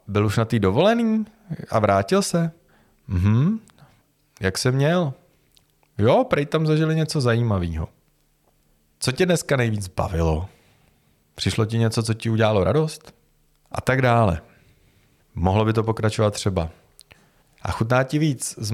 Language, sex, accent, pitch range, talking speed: Czech, male, native, 100-140 Hz, 140 wpm